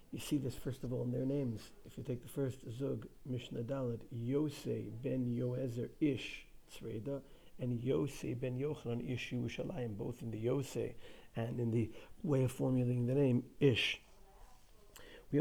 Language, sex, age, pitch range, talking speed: English, male, 50-69, 115-135 Hz, 160 wpm